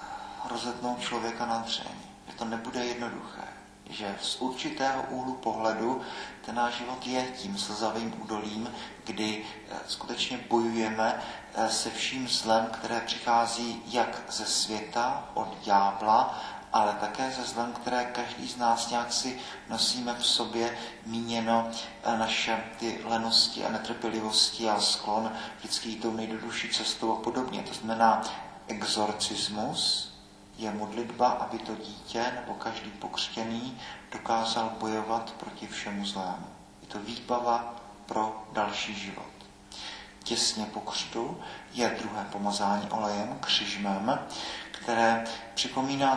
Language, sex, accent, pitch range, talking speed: Czech, male, native, 110-120 Hz, 115 wpm